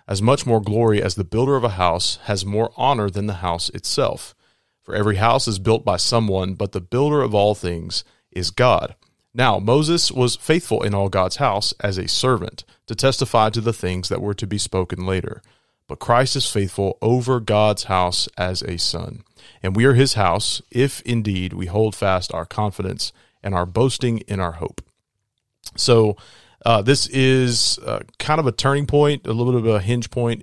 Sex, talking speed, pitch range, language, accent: male, 195 wpm, 95-120 Hz, English, American